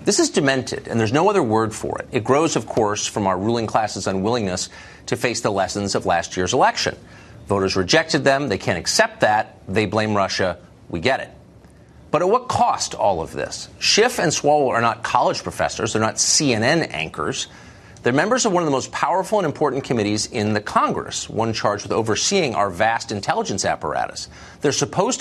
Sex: male